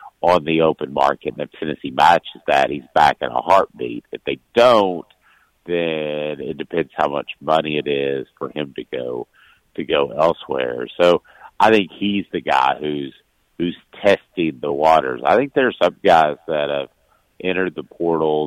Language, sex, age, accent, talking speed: English, male, 50-69, American, 175 wpm